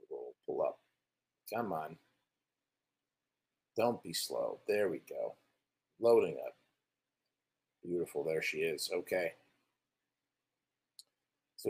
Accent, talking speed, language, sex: American, 80 wpm, English, male